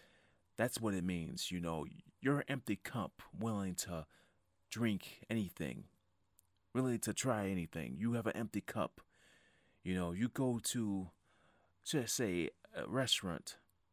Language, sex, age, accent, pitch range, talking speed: English, male, 30-49, American, 90-105 Hz, 140 wpm